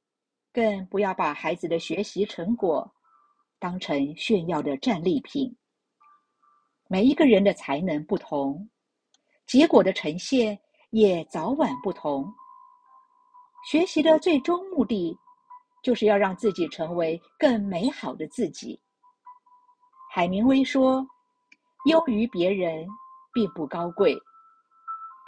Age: 50-69